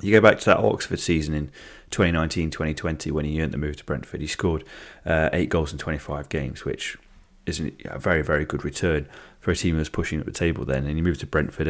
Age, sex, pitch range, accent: 30-49, male, 75-90 Hz, British